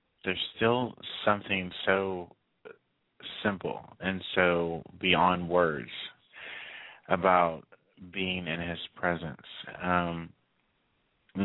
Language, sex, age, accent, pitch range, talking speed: English, male, 30-49, American, 80-90 Hz, 85 wpm